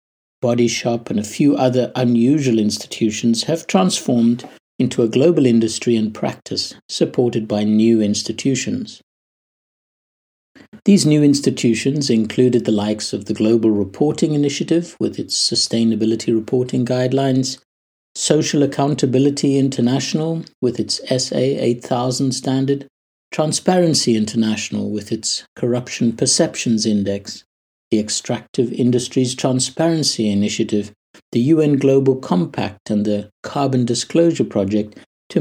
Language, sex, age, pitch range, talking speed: English, male, 60-79, 110-135 Hz, 110 wpm